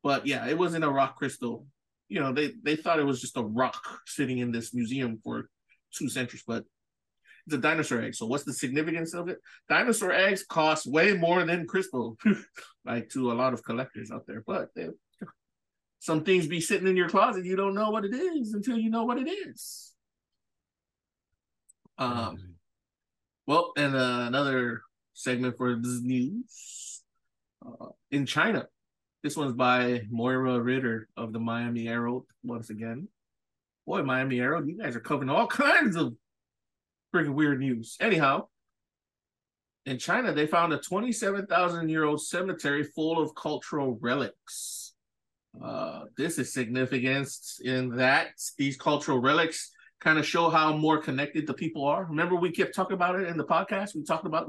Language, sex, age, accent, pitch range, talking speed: English, male, 20-39, American, 120-170 Hz, 165 wpm